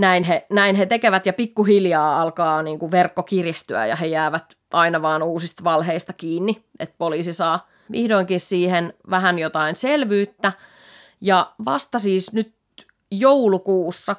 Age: 30-49